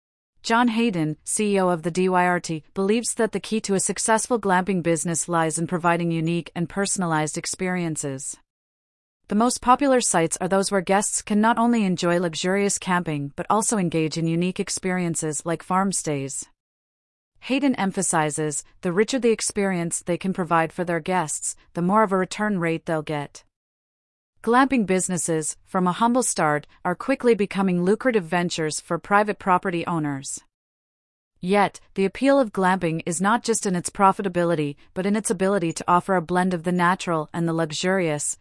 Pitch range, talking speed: 165-200 Hz, 165 wpm